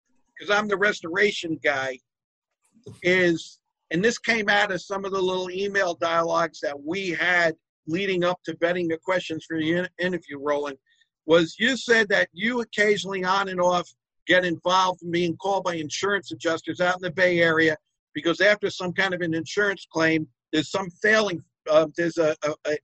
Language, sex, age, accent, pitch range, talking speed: English, male, 50-69, American, 160-190 Hz, 180 wpm